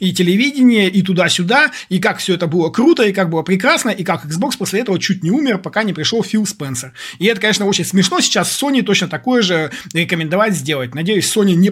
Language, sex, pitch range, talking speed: Russian, male, 160-200 Hz, 215 wpm